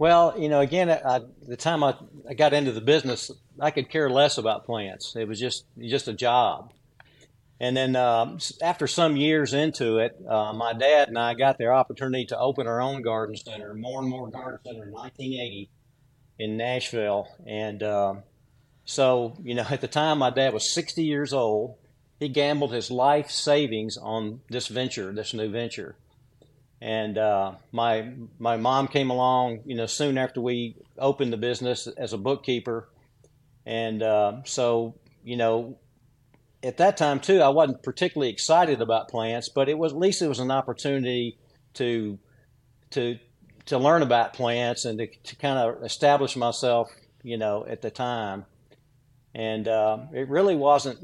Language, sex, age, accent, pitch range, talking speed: English, male, 50-69, American, 115-140 Hz, 170 wpm